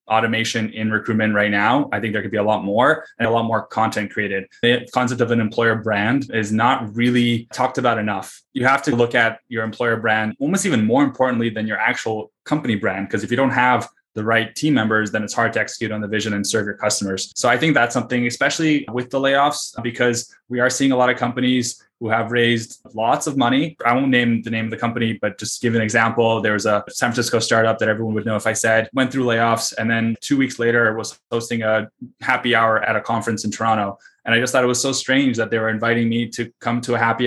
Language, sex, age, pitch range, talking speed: English, male, 20-39, 110-125 Hz, 250 wpm